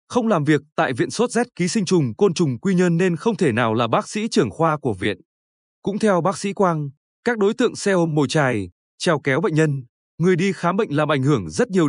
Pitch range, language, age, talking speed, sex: 150-200 Hz, Vietnamese, 20-39, 250 wpm, male